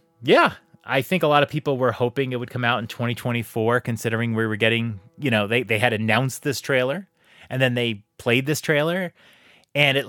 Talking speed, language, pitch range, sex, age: 210 wpm, English, 105-155 Hz, male, 30-49